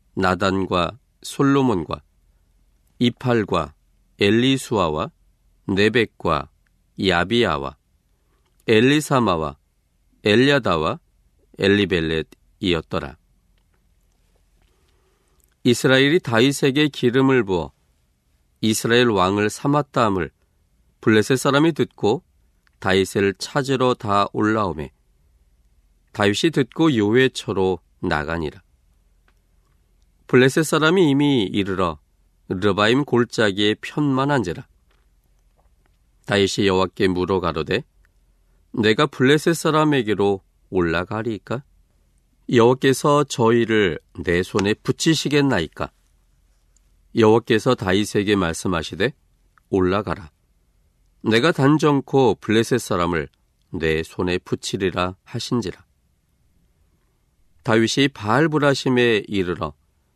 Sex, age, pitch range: male, 40-59, 80-120 Hz